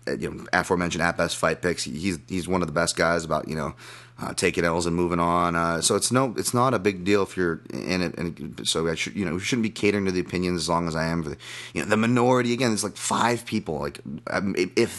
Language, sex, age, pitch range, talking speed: English, male, 30-49, 90-115 Hz, 260 wpm